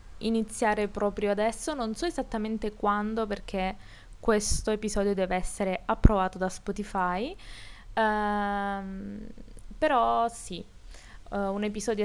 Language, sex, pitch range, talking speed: Italian, female, 185-225 Hz, 105 wpm